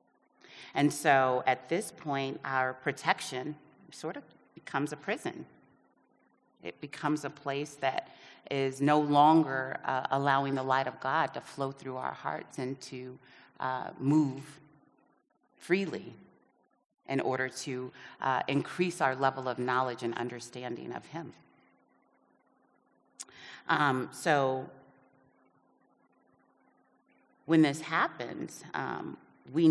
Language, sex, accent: English, female, American